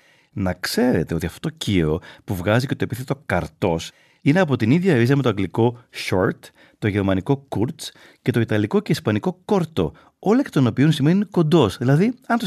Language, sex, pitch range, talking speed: Greek, male, 105-170 Hz, 190 wpm